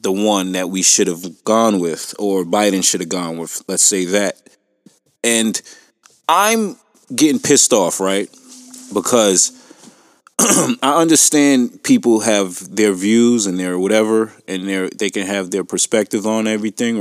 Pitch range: 100-140 Hz